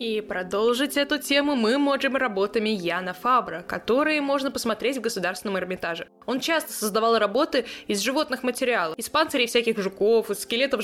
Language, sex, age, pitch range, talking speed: Russian, female, 20-39, 220-280 Hz, 155 wpm